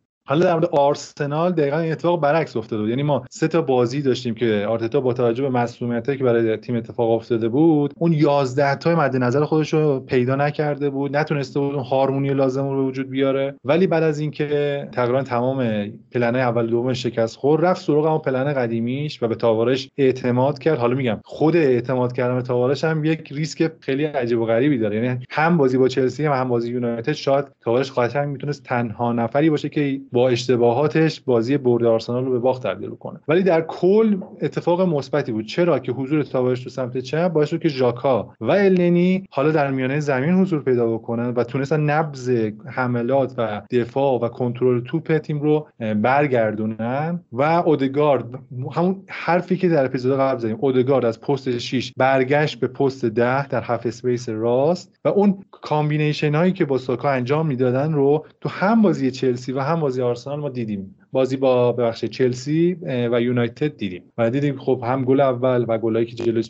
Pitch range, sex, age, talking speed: 120-150 Hz, male, 30-49, 180 wpm